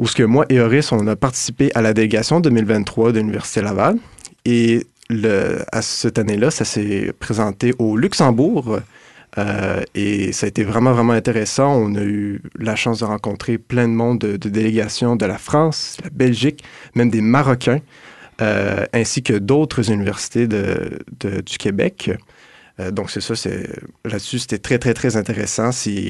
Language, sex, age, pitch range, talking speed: French, male, 30-49, 105-130 Hz, 175 wpm